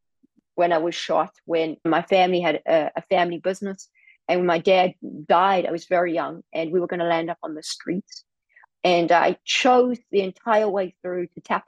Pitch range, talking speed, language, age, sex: 165-195 Hz, 200 wpm, English, 30-49, female